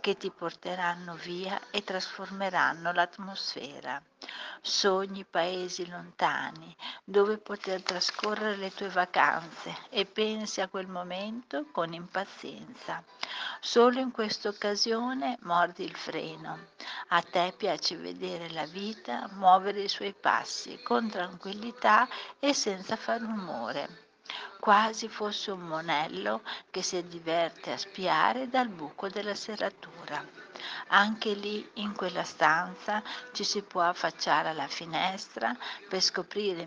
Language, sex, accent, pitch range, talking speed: Italian, female, native, 175-215 Hz, 120 wpm